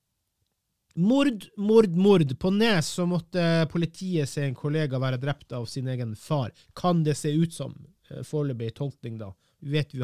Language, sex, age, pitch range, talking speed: English, male, 30-49, 125-160 Hz, 155 wpm